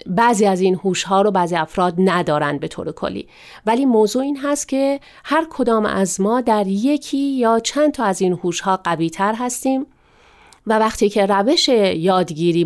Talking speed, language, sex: 175 wpm, Persian, female